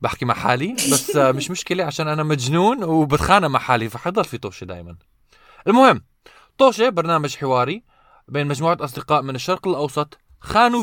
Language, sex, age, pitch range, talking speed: Arabic, male, 20-39, 125-185 Hz, 150 wpm